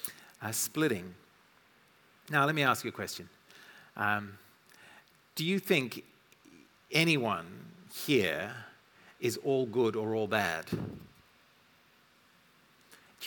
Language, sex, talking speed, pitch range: English, male, 100 wpm, 110-150 Hz